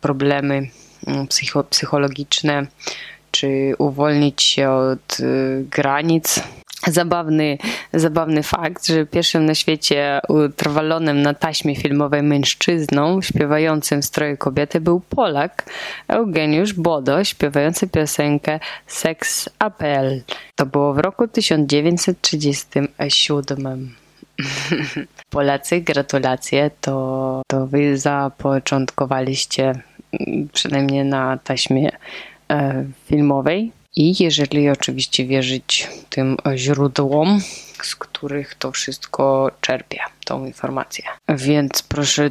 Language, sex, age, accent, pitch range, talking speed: Polish, female, 20-39, native, 140-160 Hz, 90 wpm